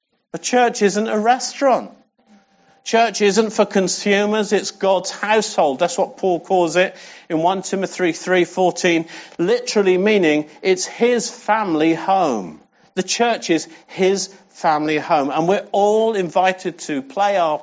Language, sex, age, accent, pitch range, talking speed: English, male, 50-69, British, 175-215 Hz, 145 wpm